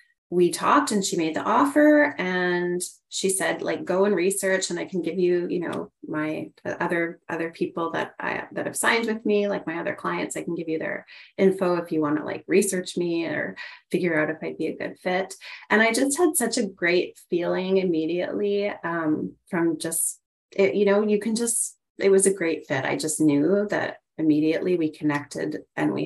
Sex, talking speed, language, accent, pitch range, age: female, 205 wpm, English, American, 160-205 Hz, 30-49